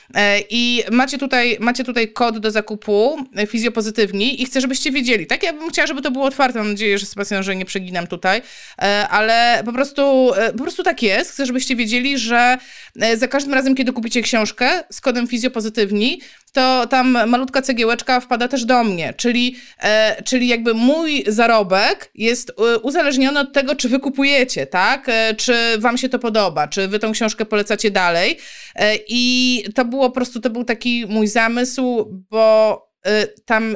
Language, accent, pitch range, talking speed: Polish, native, 220-270 Hz, 170 wpm